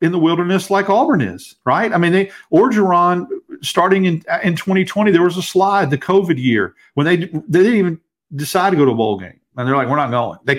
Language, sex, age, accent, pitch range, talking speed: English, male, 50-69, American, 140-190 Hz, 240 wpm